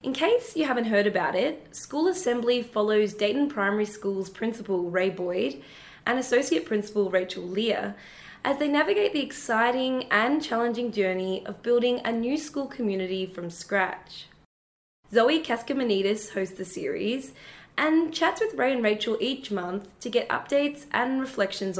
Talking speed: 150 wpm